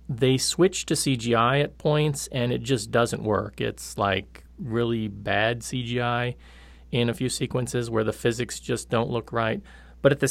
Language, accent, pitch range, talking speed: English, American, 105-130 Hz, 175 wpm